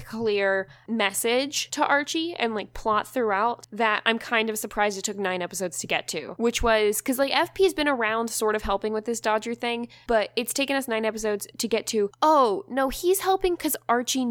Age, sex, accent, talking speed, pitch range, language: 10-29, female, American, 210 wpm, 190-230 Hz, English